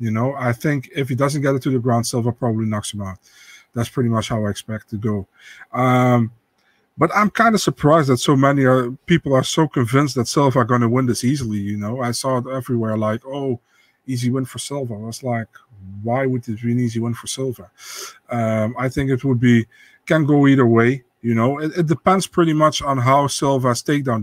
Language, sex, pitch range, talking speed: English, male, 115-140 Hz, 230 wpm